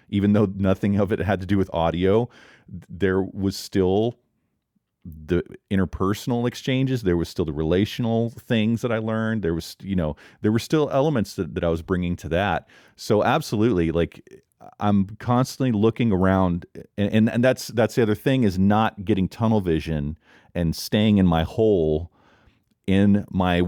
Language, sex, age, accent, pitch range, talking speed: English, male, 40-59, American, 90-110 Hz, 170 wpm